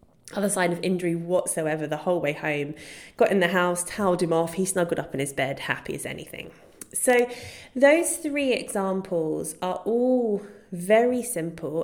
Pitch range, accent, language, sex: 170-235 Hz, British, English, female